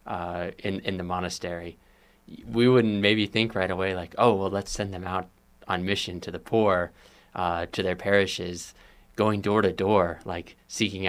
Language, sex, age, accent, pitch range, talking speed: English, male, 20-39, American, 90-100 Hz, 180 wpm